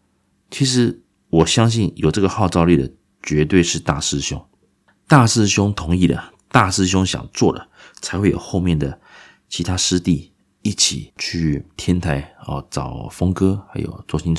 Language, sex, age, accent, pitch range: Chinese, male, 30-49, native, 80-100 Hz